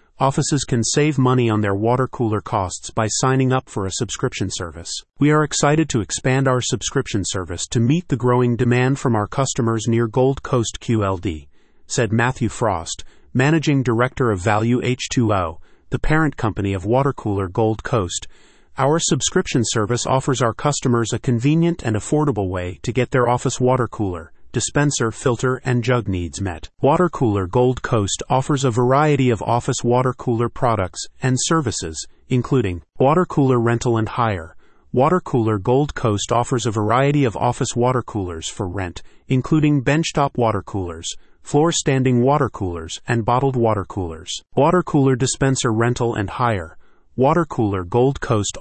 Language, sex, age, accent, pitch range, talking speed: English, male, 40-59, American, 105-135 Hz, 160 wpm